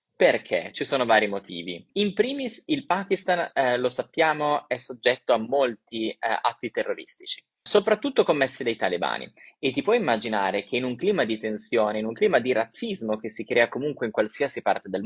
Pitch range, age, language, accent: 110-160 Hz, 20-39, Italian, native